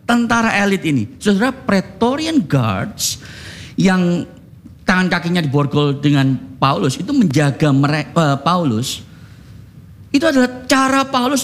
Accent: native